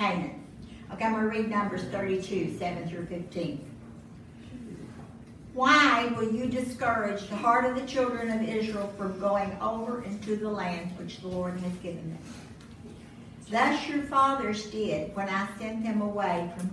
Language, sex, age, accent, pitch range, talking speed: English, female, 60-79, American, 180-240 Hz, 155 wpm